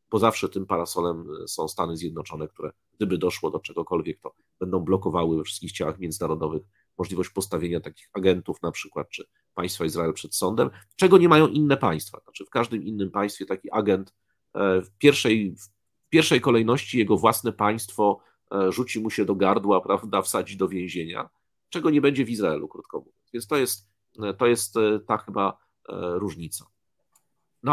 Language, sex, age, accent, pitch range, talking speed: Polish, male, 40-59, native, 90-115 Hz, 160 wpm